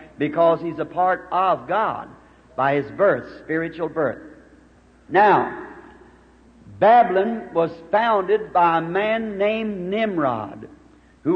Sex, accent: male, American